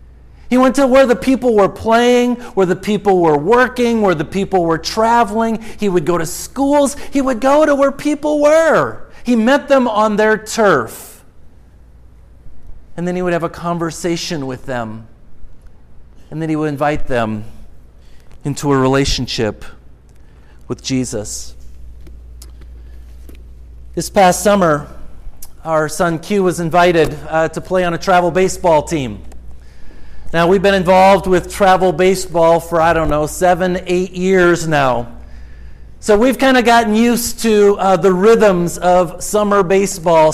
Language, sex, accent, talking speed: English, male, American, 150 wpm